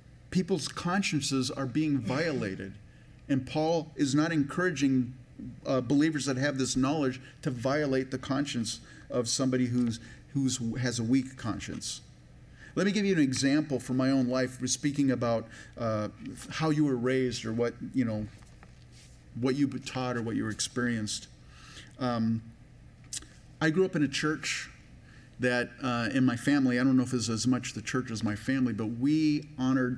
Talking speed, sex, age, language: 170 wpm, male, 40-59, English